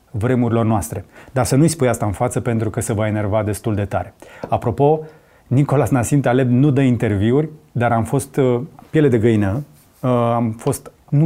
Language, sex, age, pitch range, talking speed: Romanian, male, 30-49, 115-145 Hz, 175 wpm